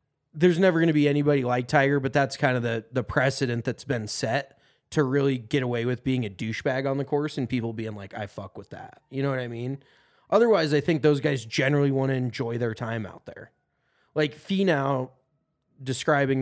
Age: 20-39